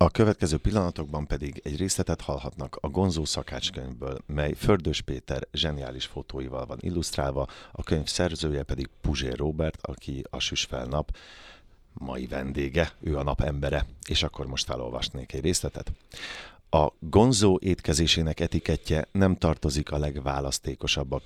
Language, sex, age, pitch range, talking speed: Hungarian, male, 50-69, 70-95 Hz, 130 wpm